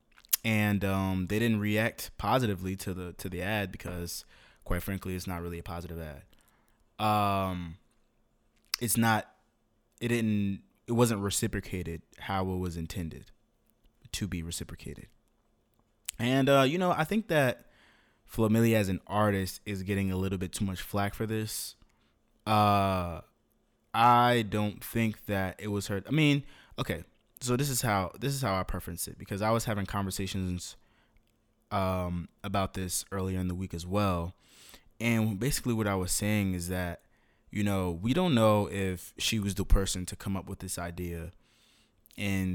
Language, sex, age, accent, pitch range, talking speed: English, male, 20-39, American, 95-110 Hz, 165 wpm